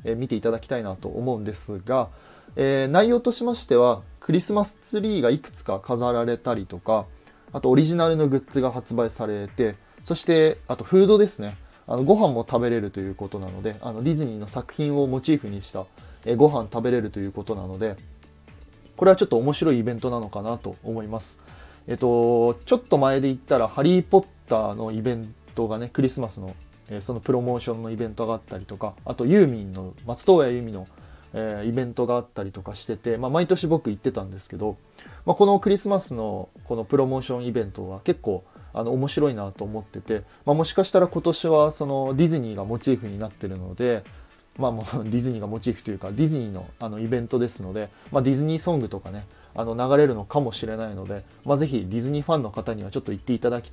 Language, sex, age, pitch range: Japanese, male, 20-39, 100-135 Hz